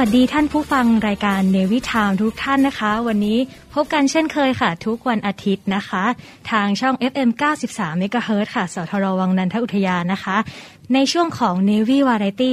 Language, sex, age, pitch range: Thai, female, 20-39, 195-245 Hz